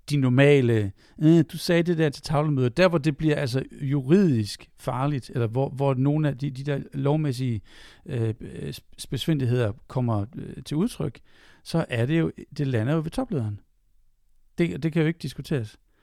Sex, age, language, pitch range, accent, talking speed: male, 60-79, Danish, 130-160 Hz, native, 170 wpm